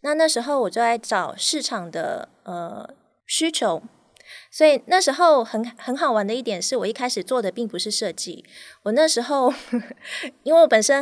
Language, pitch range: Chinese, 205-265 Hz